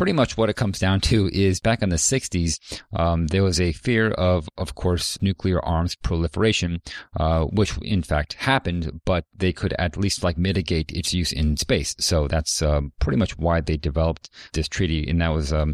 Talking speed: 200 wpm